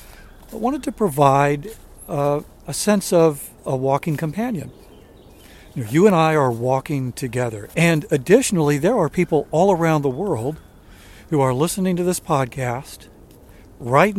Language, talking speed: English, 145 wpm